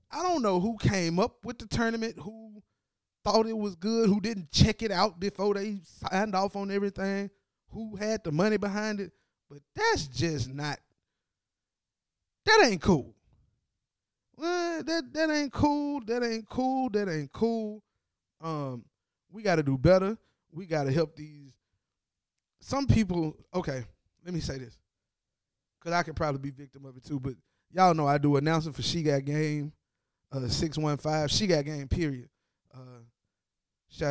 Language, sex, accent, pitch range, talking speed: English, male, American, 135-200 Hz, 170 wpm